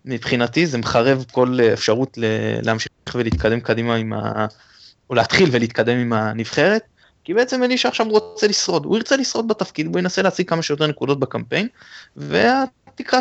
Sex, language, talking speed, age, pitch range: male, Hebrew, 150 wpm, 20-39, 125-180 Hz